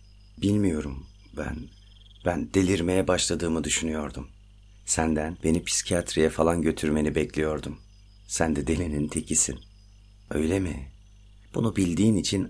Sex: male